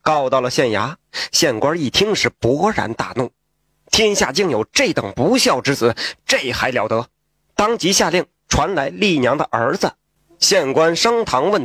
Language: Chinese